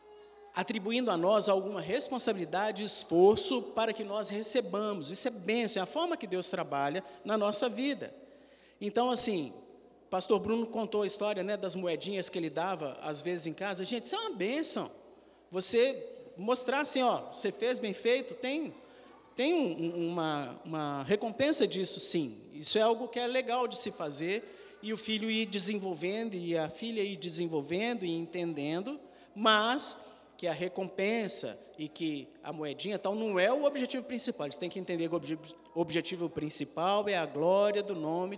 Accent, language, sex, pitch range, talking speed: Brazilian, Portuguese, male, 170-240 Hz, 170 wpm